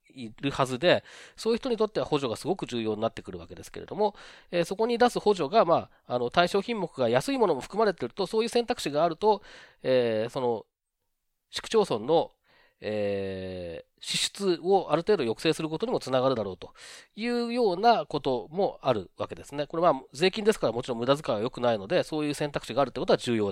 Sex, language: male, Japanese